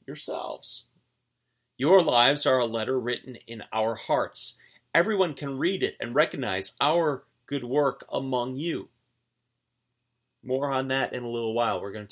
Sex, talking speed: male, 155 wpm